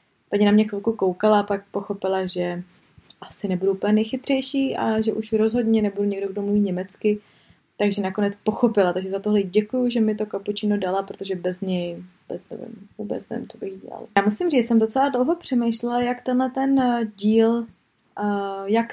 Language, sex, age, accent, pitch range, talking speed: Czech, female, 20-39, native, 195-225 Hz, 180 wpm